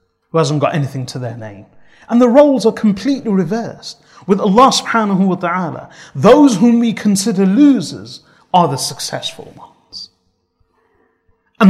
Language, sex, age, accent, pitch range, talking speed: English, male, 30-49, British, 145-225 Hz, 145 wpm